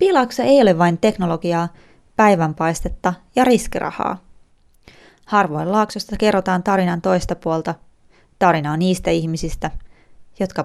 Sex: female